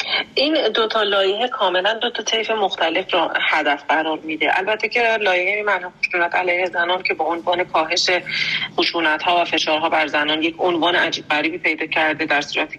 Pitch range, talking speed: 155-185 Hz, 185 wpm